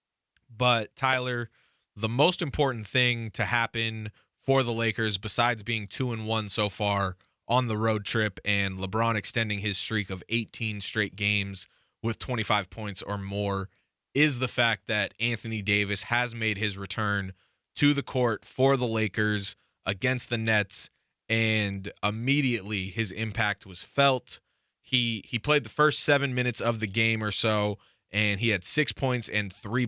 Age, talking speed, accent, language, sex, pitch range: 20-39, 160 wpm, American, English, male, 105-120 Hz